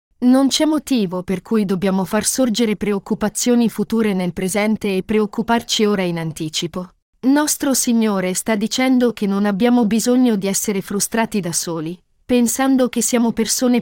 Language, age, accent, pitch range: Italian, 40-59, native, 200-255 Hz